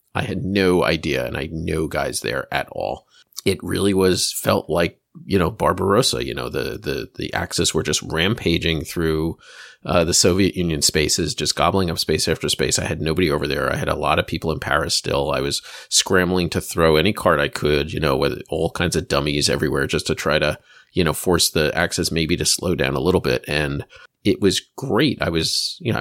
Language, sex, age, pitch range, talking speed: English, male, 30-49, 80-100 Hz, 220 wpm